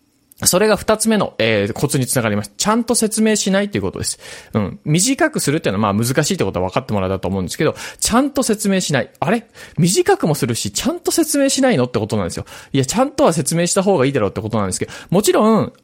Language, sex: Japanese, male